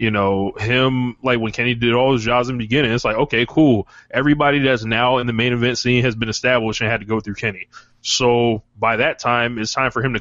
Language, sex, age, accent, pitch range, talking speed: English, male, 20-39, American, 115-130 Hz, 255 wpm